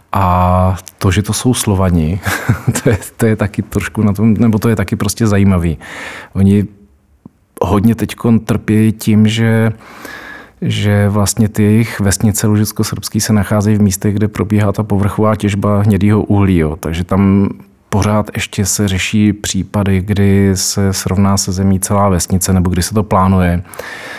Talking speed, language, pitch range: 140 wpm, Czech, 95-105 Hz